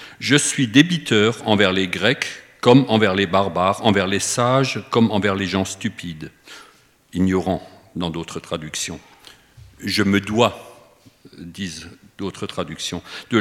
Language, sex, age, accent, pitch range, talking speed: French, male, 50-69, French, 95-115 Hz, 130 wpm